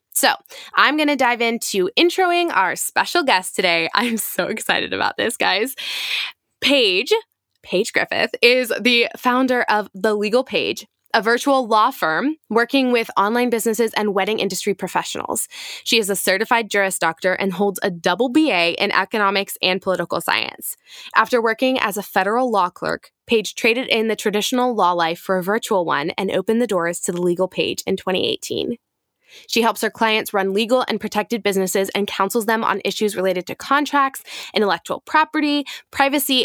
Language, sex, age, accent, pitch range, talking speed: English, female, 20-39, American, 195-260 Hz, 170 wpm